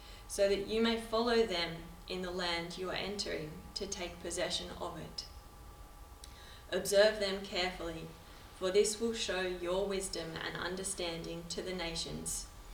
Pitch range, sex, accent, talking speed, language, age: 170-205 Hz, female, Australian, 145 wpm, English, 20-39